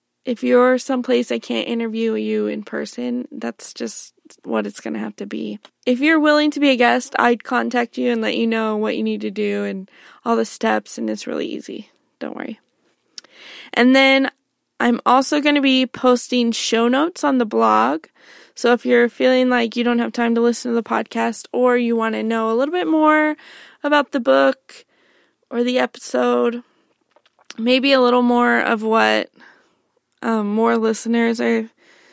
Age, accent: 20-39, American